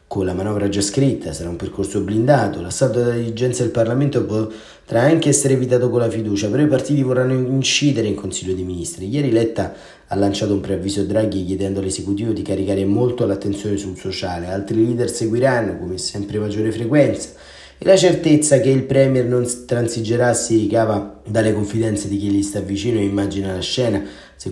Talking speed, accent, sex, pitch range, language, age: 185 wpm, native, male, 95-115 Hz, Italian, 30-49